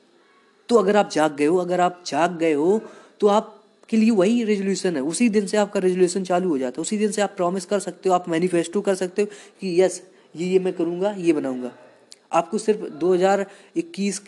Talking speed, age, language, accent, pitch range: 215 wpm, 20-39, Hindi, native, 165-200 Hz